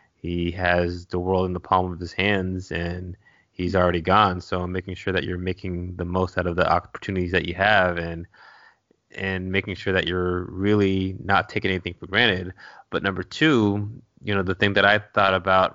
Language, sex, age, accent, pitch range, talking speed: English, male, 20-39, American, 90-95 Hz, 200 wpm